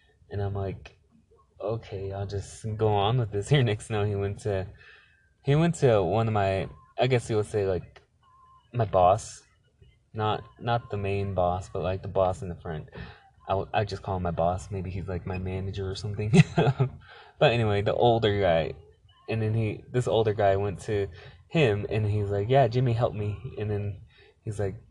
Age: 20-39